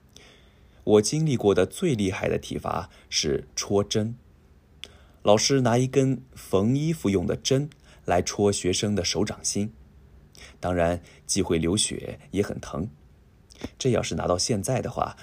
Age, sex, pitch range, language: 20-39, male, 80-115 Hz, Japanese